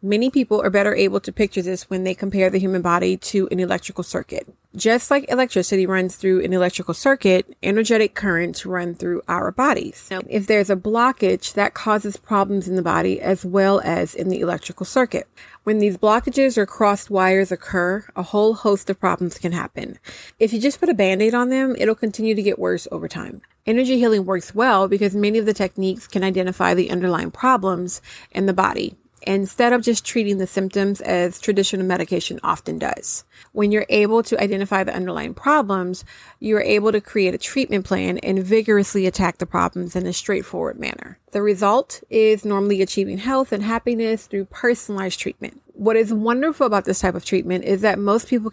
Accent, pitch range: American, 185-220 Hz